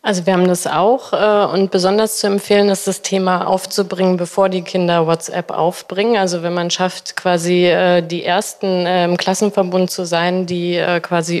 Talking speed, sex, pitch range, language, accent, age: 185 wpm, female, 175-200 Hz, German, German, 30-49